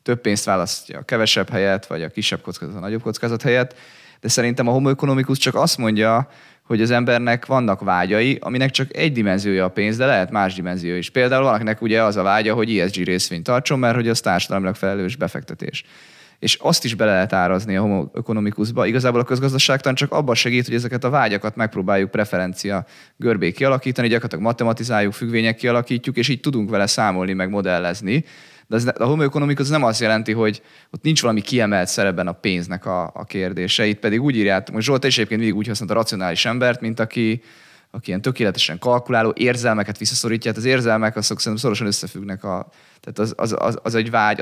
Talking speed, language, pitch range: 190 wpm, Hungarian, 100-125 Hz